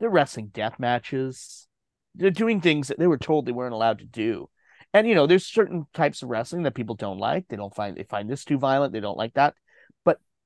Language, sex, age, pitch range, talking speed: English, male, 30-49, 120-165 Hz, 235 wpm